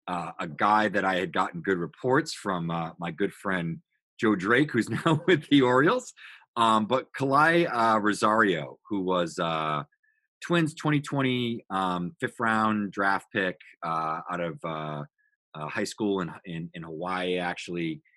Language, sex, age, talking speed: English, male, 30-49, 160 wpm